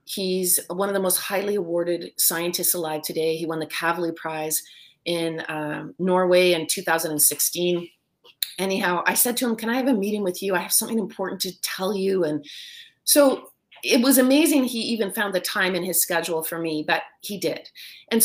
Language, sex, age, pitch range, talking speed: English, female, 30-49, 180-250 Hz, 190 wpm